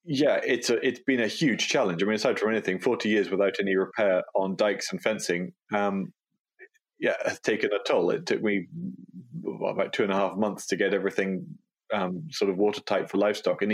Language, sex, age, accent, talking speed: English, male, 20-39, British, 210 wpm